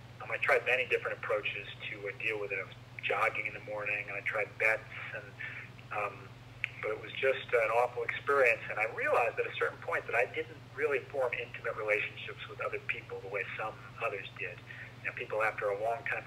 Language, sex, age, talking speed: English, male, 40-59, 220 wpm